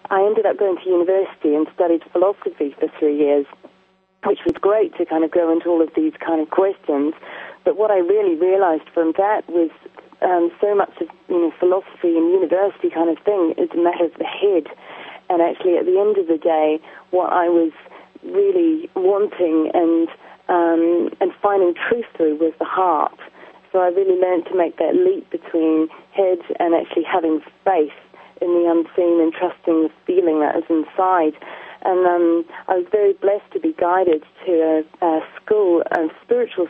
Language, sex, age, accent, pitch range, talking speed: English, female, 40-59, British, 165-190 Hz, 185 wpm